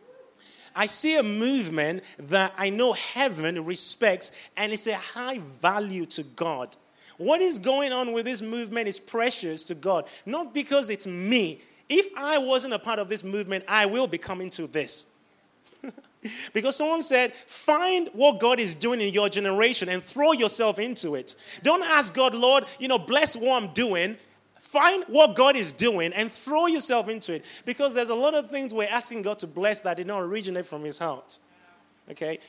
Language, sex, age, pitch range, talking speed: English, male, 30-49, 180-255 Hz, 185 wpm